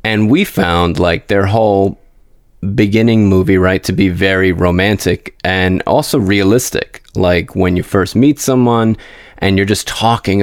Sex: male